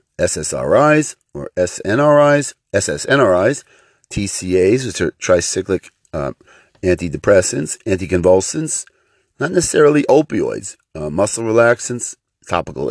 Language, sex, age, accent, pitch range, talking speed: English, male, 50-69, American, 90-130 Hz, 85 wpm